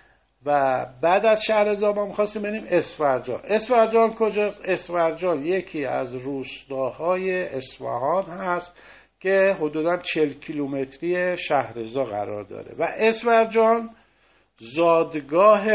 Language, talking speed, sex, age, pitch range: Persian, 95 wpm, male, 50-69, 125-165 Hz